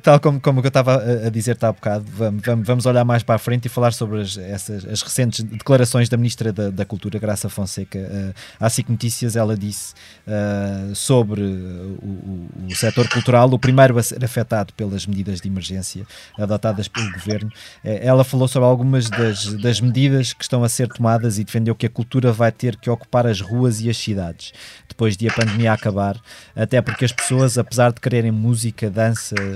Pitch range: 105-120 Hz